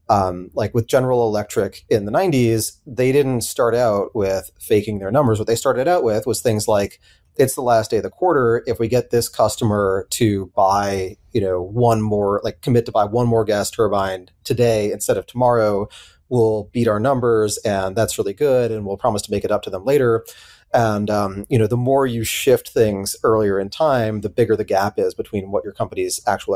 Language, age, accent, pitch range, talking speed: English, 30-49, American, 100-125 Hz, 210 wpm